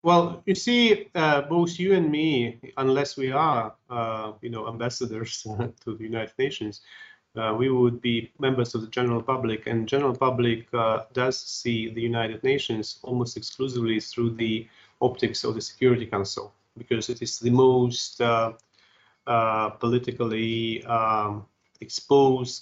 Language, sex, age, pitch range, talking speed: English, male, 30-49, 115-130 Hz, 150 wpm